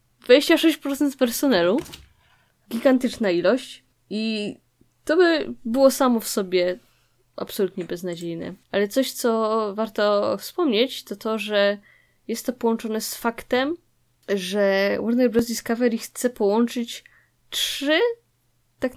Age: 10-29